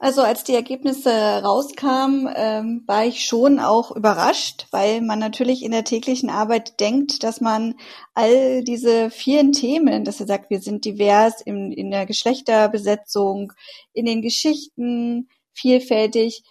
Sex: female